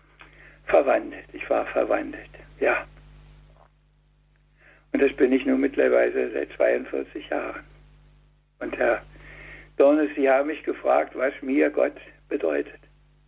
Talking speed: 115 wpm